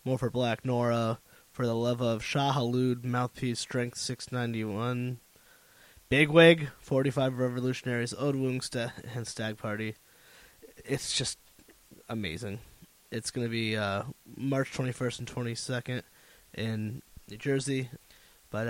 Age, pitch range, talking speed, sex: 20-39, 120-140 Hz, 115 wpm, male